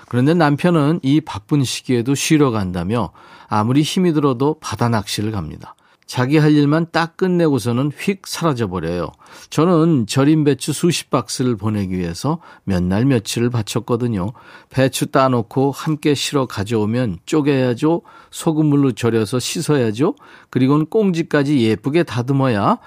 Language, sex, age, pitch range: Korean, male, 40-59, 115-150 Hz